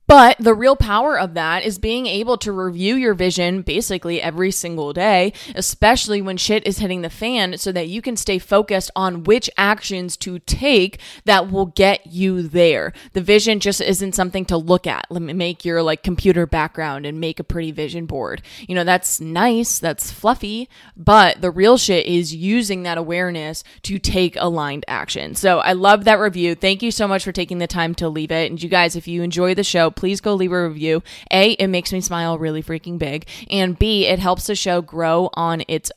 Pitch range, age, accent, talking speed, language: 170-200 Hz, 20-39, American, 210 wpm, English